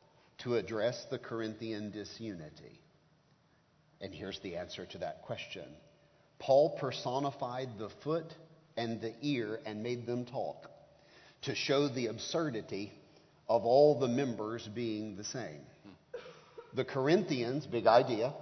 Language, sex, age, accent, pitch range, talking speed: English, male, 40-59, American, 120-155 Hz, 125 wpm